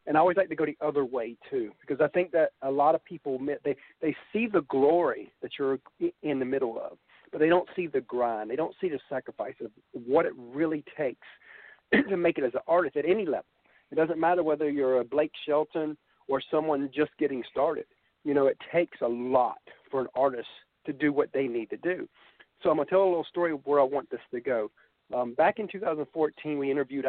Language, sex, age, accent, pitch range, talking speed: English, male, 40-59, American, 140-180 Hz, 230 wpm